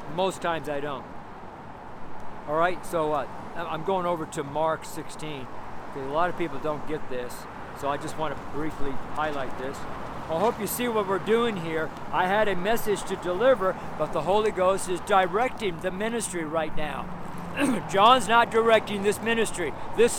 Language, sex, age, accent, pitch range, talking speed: English, male, 50-69, American, 175-225 Hz, 175 wpm